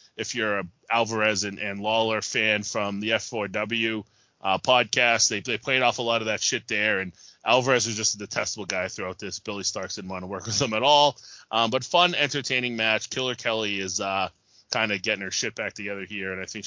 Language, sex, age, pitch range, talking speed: English, male, 20-39, 100-125 Hz, 225 wpm